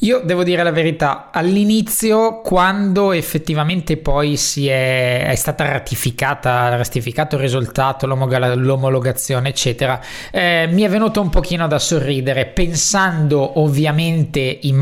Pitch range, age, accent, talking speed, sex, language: 140-180 Hz, 20-39, native, 120 wpm, male, Italian